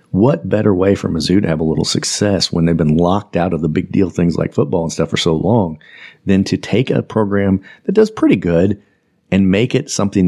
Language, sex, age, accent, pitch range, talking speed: English, male, 40-59, American, 85-100 Hz, 235 wpm